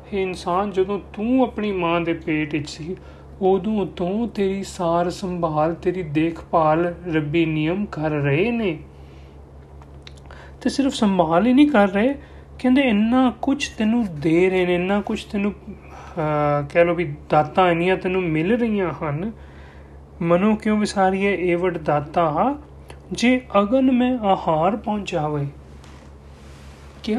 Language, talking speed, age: Punjabi, 125 wpm, 30-49